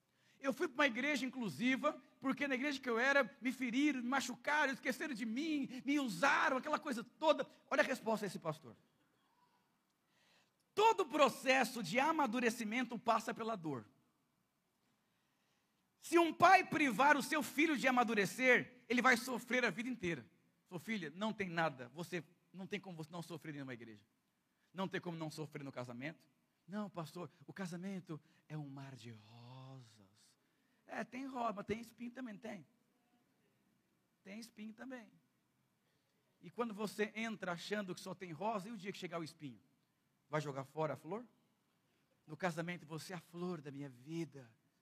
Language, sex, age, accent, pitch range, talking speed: Portuguese, male, 50-69, Brazilian, 160-250 Hz, 165 wpm